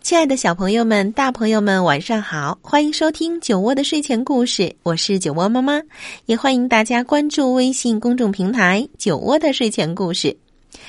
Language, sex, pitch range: Chinese, female, 200-295 Hz